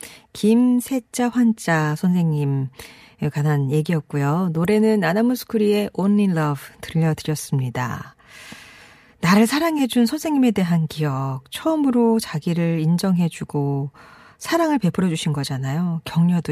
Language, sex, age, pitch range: Korean, female, 40-59, 155-220 Hz